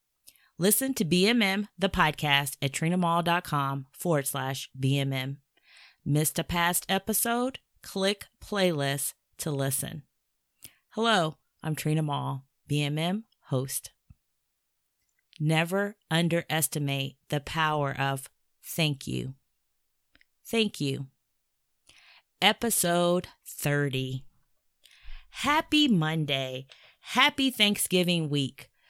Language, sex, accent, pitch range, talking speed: English, female, American, 140-180 Hz, 85 wpm